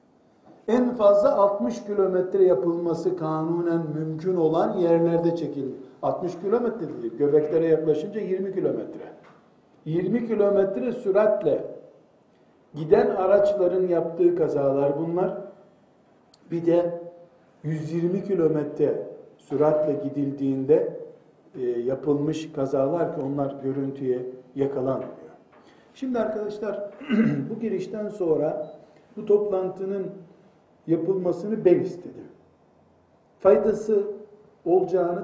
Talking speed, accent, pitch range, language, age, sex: 80 wpm, native, 150-200 Hz, Turkish, 60-79, male